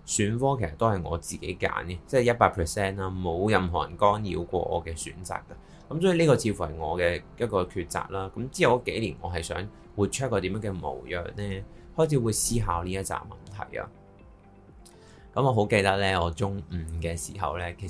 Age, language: 20-39, Chinese